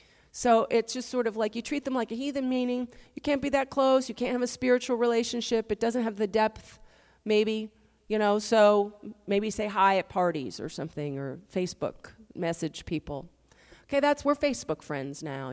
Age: 40-59